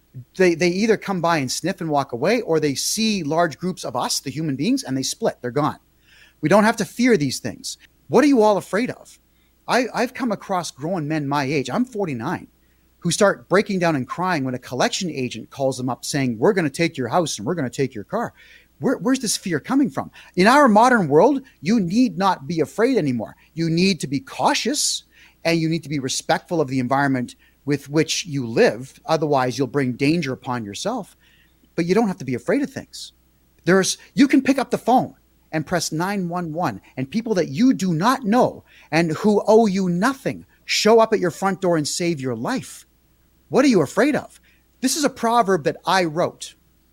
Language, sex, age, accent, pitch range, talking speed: English, male, 30-49, American, 140-205 Hz, 215 wpm